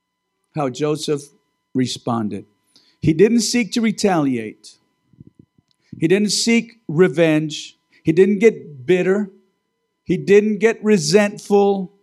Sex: male